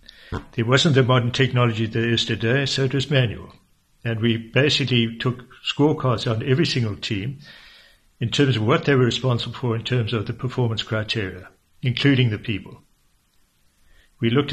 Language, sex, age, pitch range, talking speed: English, male, 60-79, 115-135 Hz, 165 wpm